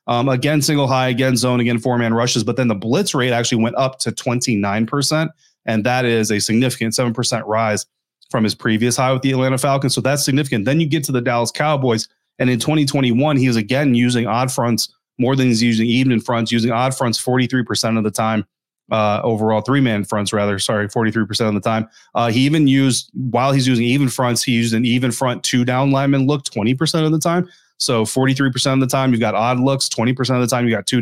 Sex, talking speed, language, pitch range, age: male, 220 wpm, English, 115-135 Hz, 30-49